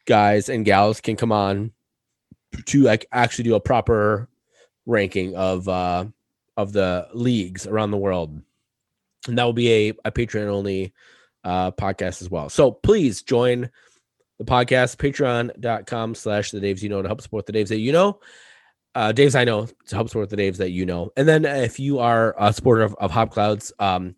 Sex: male